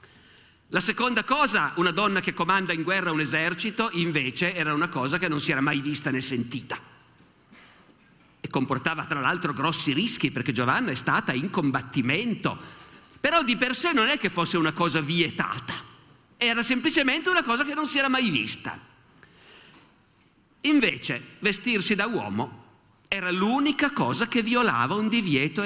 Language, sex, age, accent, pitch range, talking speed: Italian, male, 50-69, native, 150-220 Hz, 155 wpm